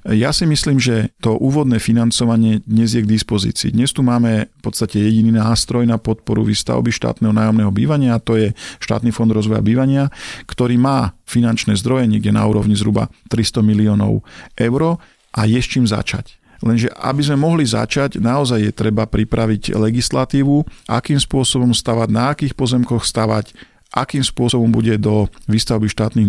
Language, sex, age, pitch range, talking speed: Slovak, male, 50-69, 110-125 Hz, 160 wpm